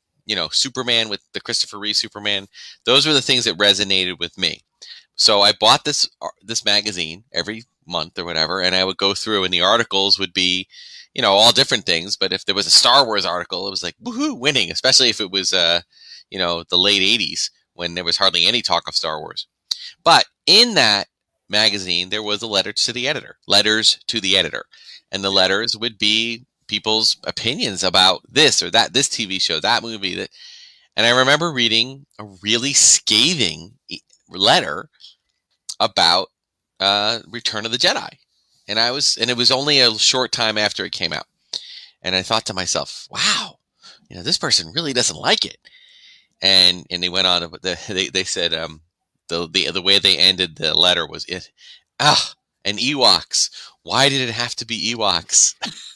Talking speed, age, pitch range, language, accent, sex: 190 wpm, 30-49, 95-120 Hz, English, American, male